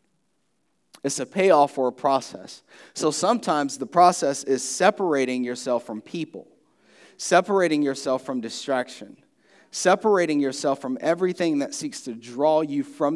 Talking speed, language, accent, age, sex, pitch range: 130 wpm, English, American, 30-49, male, 125-175 Hz